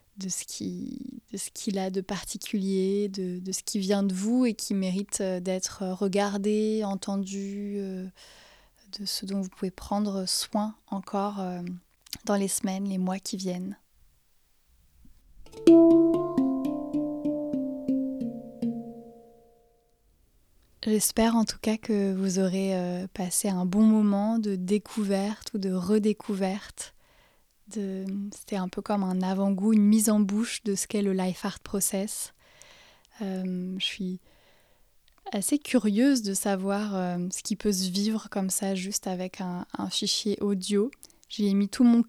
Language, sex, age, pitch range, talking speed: French, female, 20-39, 190-225 Hz, 135 wpm